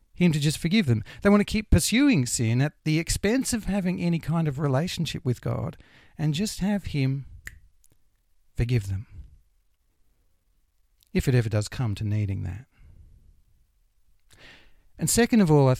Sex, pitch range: male, 95-155 Hz